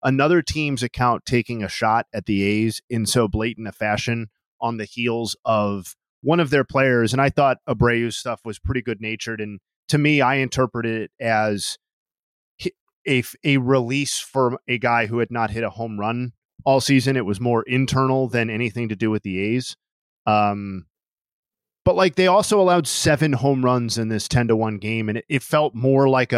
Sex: male